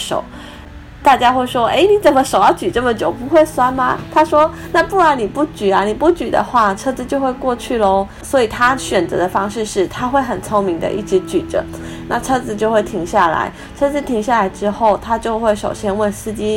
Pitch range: 180-225 Hz